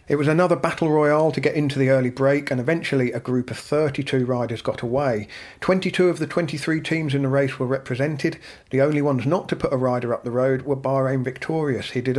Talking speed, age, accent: 225 wpm, 40-59, British